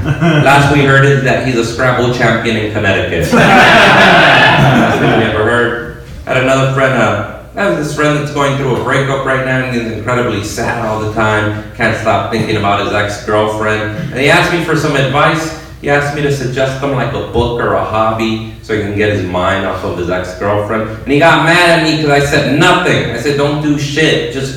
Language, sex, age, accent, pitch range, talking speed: English, male, 30-49, American, 120-150 Hz, 220 wpm